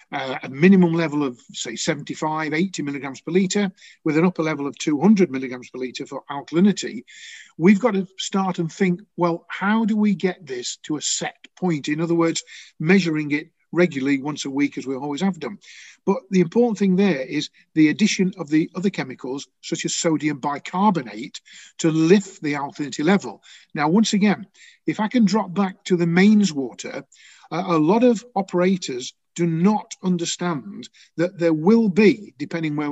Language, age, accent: English, 50-69, British